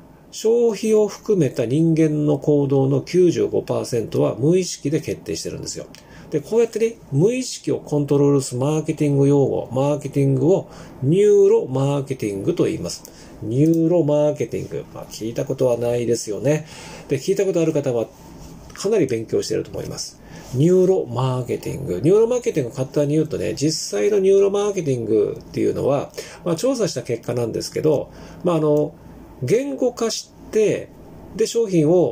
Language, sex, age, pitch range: Japanese, male, 40-59, 140-200 Hz